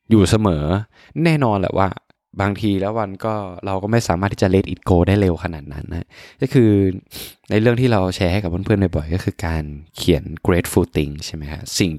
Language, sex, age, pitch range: Thai, male, 20-39, 80-105 Hz